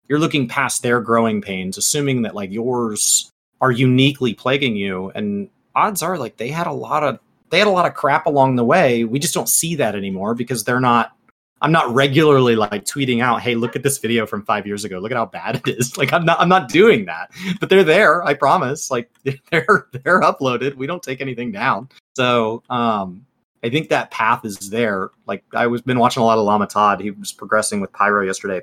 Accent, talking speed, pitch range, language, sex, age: American, 225 wpm, 115-160 Hz, English, male, 30-49